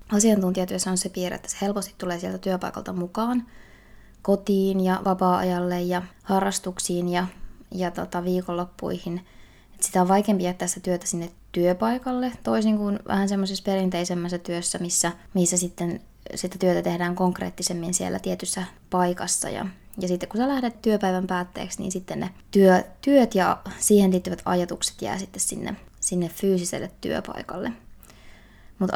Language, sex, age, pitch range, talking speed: Finnish, female, 20-39, 180-205 Hz, 140 wpm